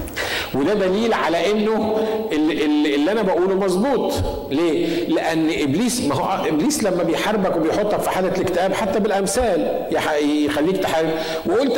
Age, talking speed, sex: 50-69, 130 wpm, male